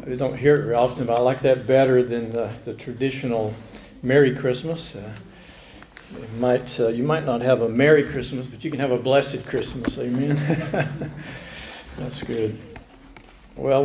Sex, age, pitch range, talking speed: male, 50-69, 125-145 Hz, 165 wpm